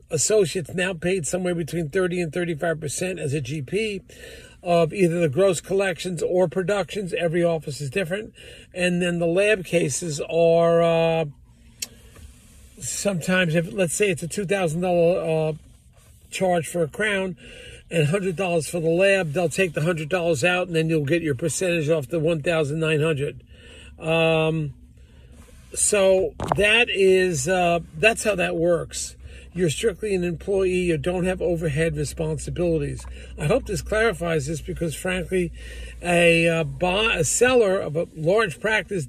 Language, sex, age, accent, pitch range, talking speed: English, male, 50-69, American, 165-190 Hz, 150 wpm